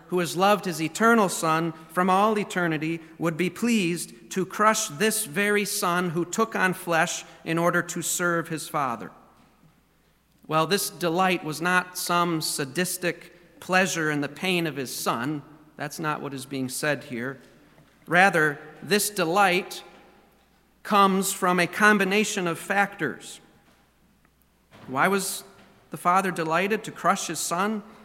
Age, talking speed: 40-59, 140 wpm